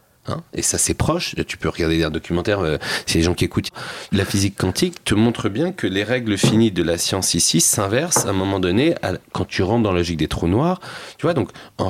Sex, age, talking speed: male, 30-49, 230 wpm